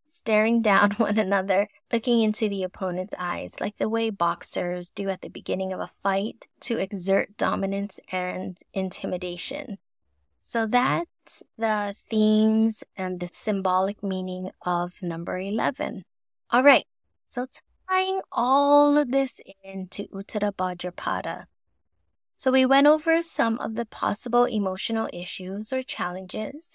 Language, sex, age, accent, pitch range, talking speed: English, female, 20-39, American, 190-230 Hz, 130 wpm